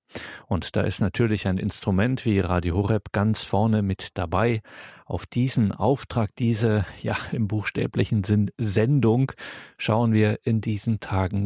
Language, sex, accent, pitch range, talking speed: German, male, German, 100-120 Hz, 140 wpm